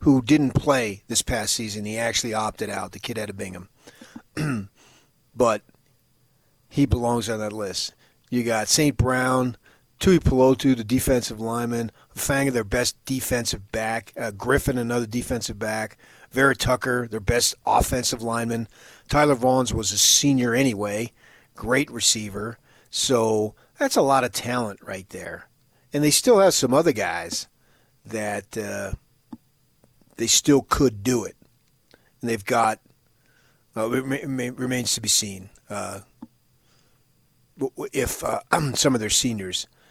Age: 40-59